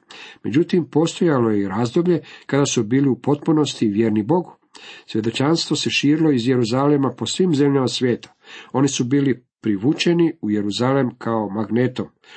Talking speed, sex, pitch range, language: 140 wpm, male, 110-135 Hz, Croatian